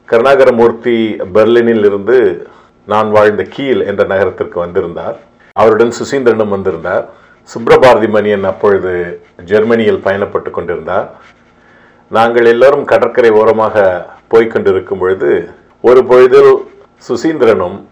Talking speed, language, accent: 90 wpm, Tamil, native